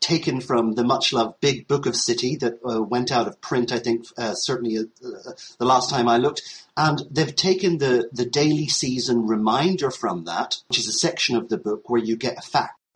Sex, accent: male, British